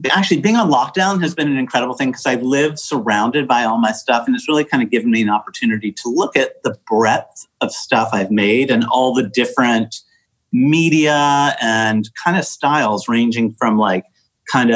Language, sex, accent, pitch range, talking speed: English, male, American, 105-145 Hz, 195 wpm